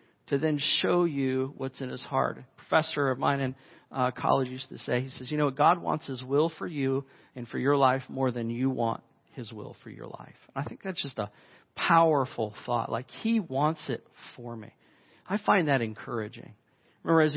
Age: 40-59